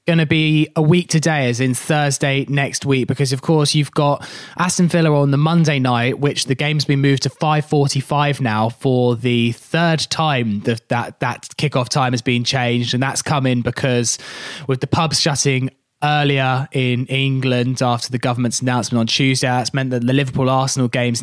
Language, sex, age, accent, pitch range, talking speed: English, male, 20-39, British, 125-145 Hz, 185 wpm